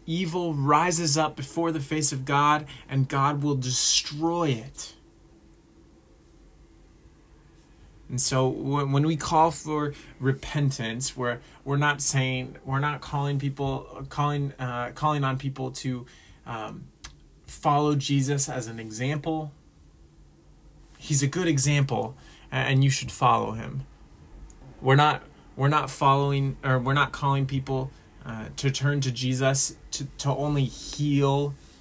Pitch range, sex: 125-145 Hz, male